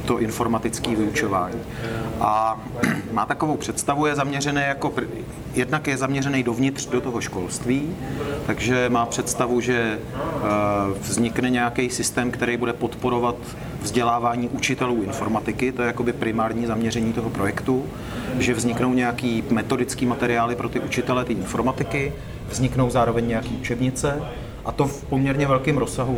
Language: Czech